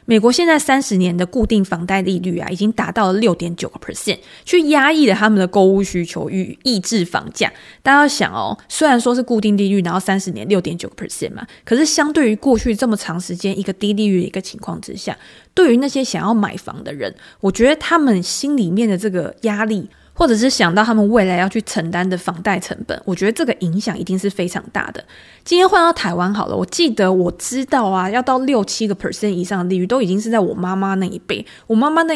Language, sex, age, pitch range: Chinese, female, 20-39, 185-245 Hz